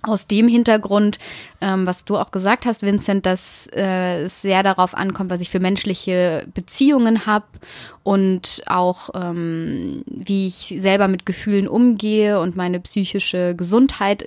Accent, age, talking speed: German, 20-39, 145 wpm